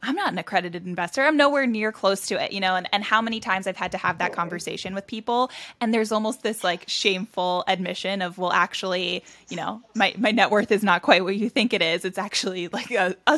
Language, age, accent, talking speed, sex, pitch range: English, 10-29, American, 245 wpm, female, 180-220 Hz